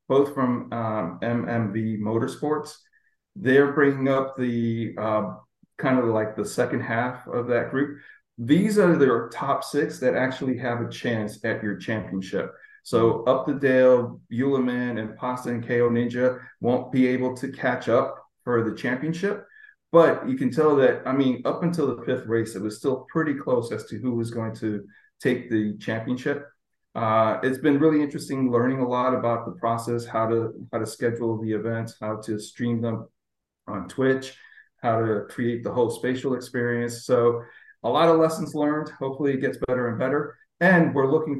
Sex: male